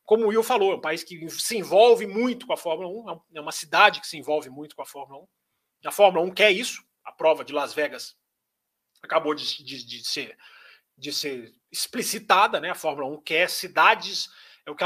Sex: male